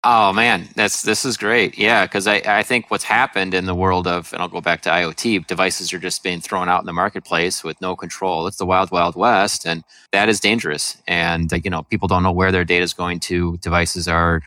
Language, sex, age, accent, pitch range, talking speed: English, male, 30-49, American, 85-100 Hz, 240 wpm